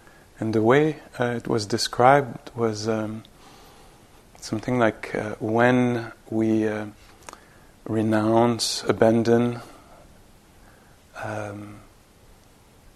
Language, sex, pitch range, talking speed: English, male, 110-120 Hz, 85 wpm